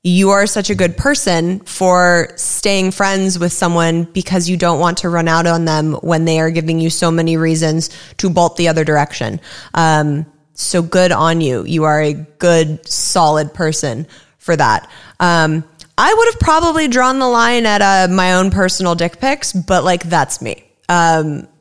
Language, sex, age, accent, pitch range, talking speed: English, female, 20-39, American, 160-190 Hz, 185 wpm